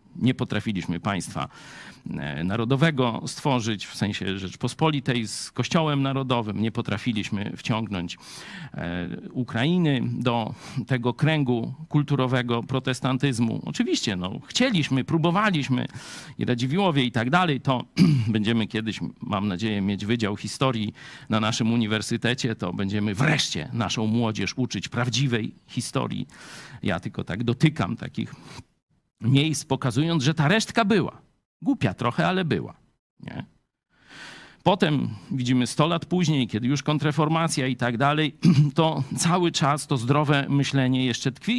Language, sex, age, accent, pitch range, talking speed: Polish, male, 50-69, native, 115-150 Hz, 120 wpm